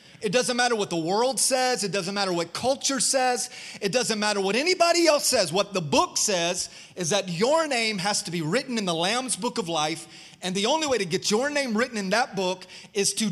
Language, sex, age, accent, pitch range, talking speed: English, male, 30-49, American, 175-245 Hz, 235 wpm